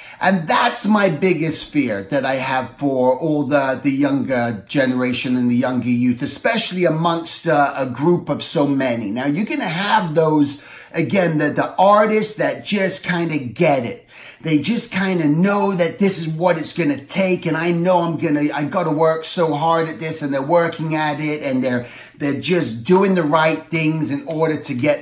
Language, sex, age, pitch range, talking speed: English, male, 30-49, 150-190 Hz, 205 wpm